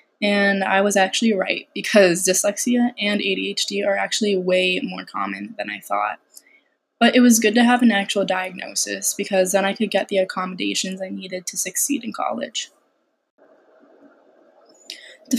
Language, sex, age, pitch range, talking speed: English, female, 10-29, 190-235 Hz, 155 wpm